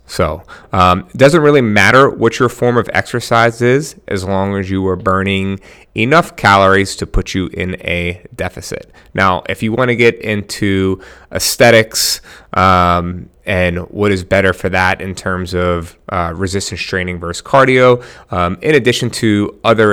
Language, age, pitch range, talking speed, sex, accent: English, 30-49, 90-110 Hz, 165 wpm, male, American